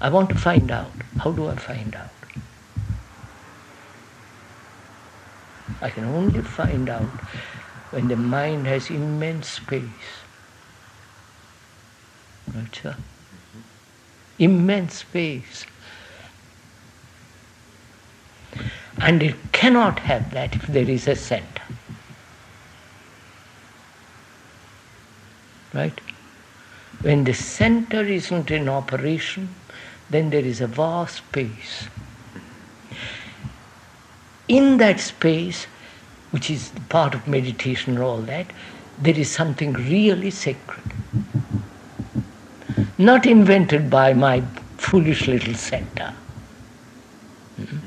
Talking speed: 90 wpm